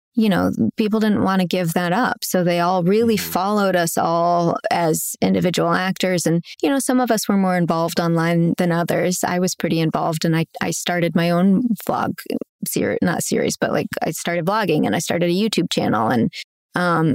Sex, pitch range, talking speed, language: female, 170-210 Hz, 205 wpm, English